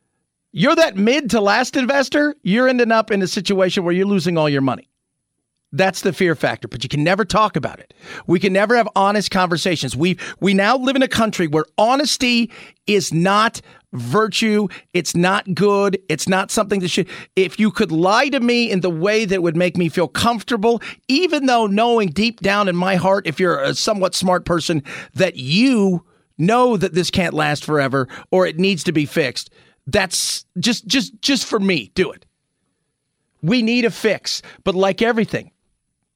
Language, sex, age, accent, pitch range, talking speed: English, male, 40-59, American, 175-225 Hz, 185 wpm